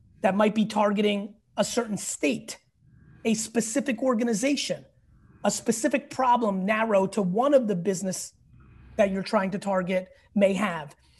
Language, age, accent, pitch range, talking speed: English, 30-49, American, 205-270 Hz, 140 wpm